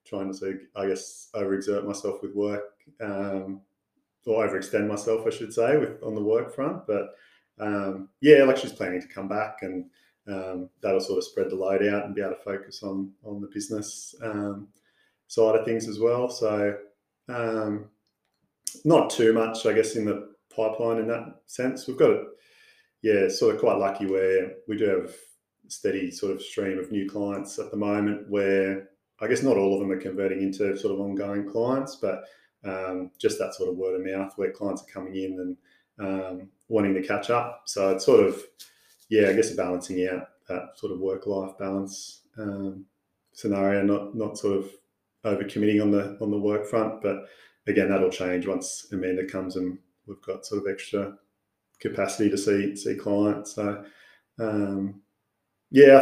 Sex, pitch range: male, 95-110 Hz